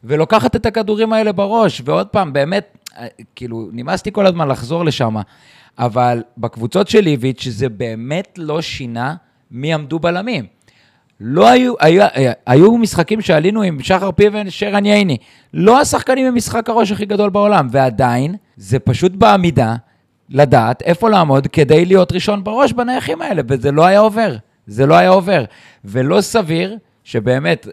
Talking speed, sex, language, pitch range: 150 wpm, male, Hebrew, 125-185 Hz